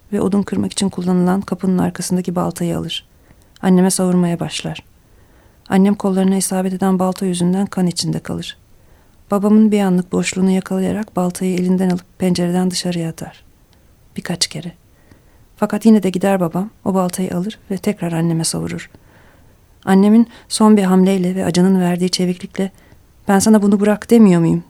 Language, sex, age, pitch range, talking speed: Turkish, female, 40-59, 175-200 Hz, 145 wpm